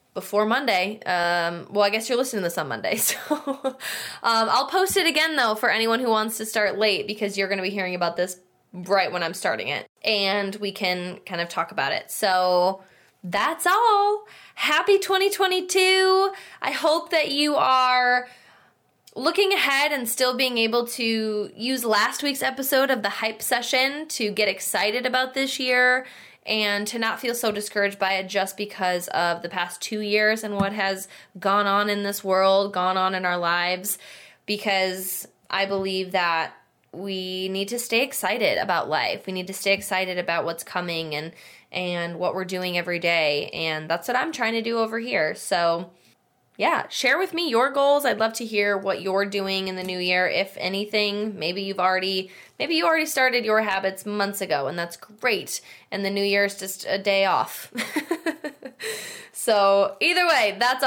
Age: 20-39